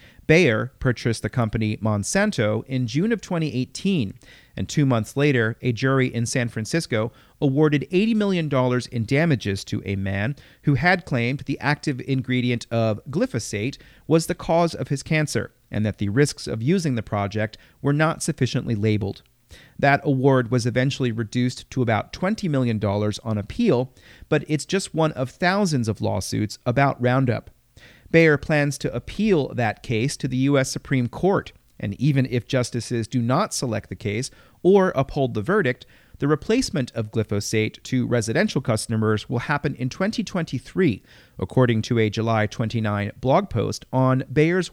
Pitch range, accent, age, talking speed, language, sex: 110-145 Hz, American, 40-59, 155 wpm, English, male